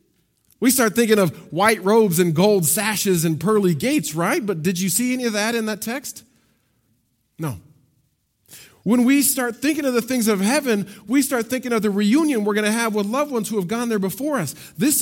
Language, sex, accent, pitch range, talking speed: English, male, American, 180-265 Hz, 210 wpm